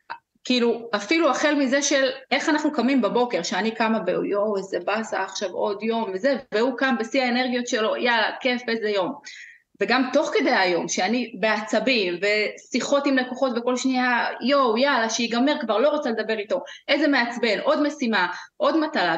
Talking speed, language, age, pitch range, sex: 165 wpm, Hebrew, 30-49, 205-285 Hz, female